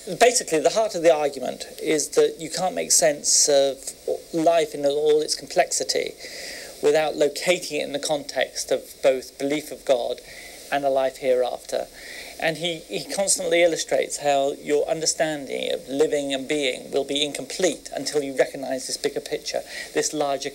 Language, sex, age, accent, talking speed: Turkish, male, 40-59, British, 165 wpm